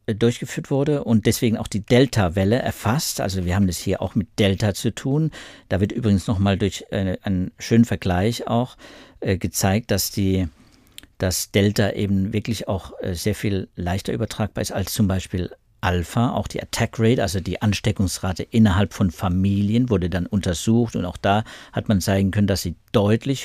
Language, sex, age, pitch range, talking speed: German, male, 50-69, 95-120 Hz, 170 wpm